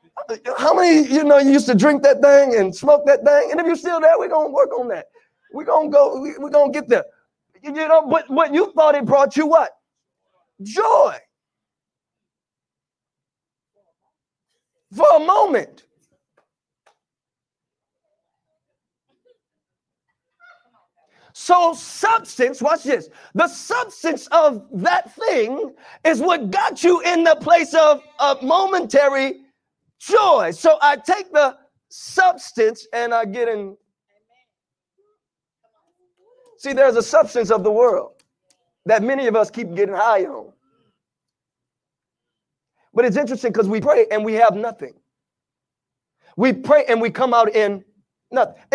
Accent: American